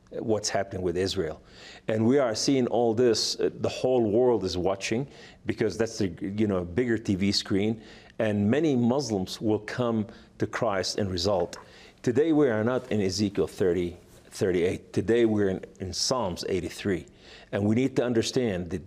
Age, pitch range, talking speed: 50-69, 100-115 Hz, 170 wpm